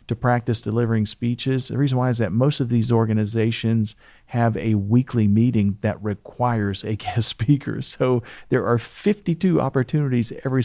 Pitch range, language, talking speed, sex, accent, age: 110-125 Hz, English, 160 wpm, male, American, 40-59